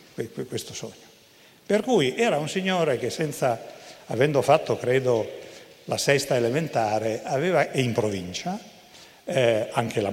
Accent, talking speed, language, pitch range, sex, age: native, 125 wpm, Italian, 125-190 Hz, male, 60-79